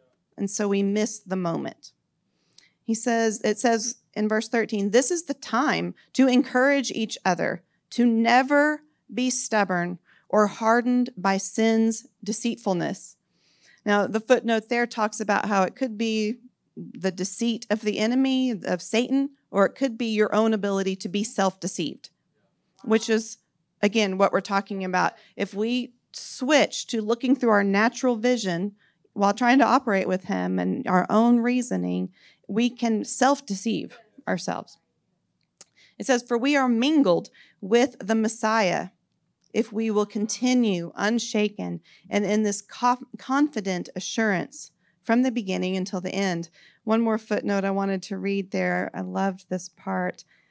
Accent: American